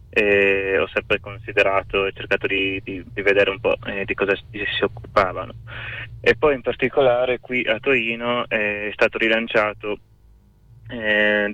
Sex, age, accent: male, 20-39, native